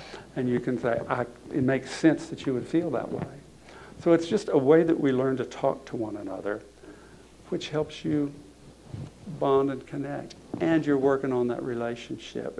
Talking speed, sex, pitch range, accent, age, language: 180 wpm, male, 120-145 Hz, American, 60-79, English